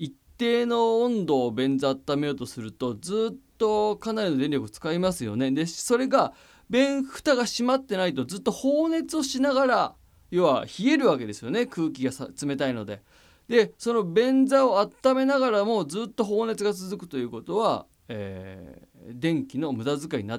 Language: Japanese